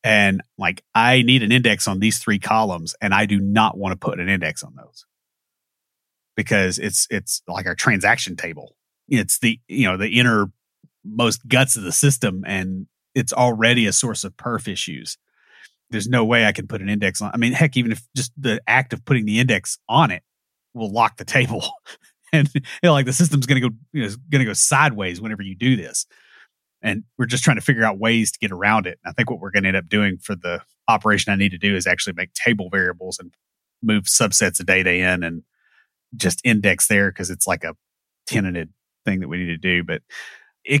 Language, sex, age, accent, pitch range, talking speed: English, male, 30-49, American, 100-125 Hz, 220 wpm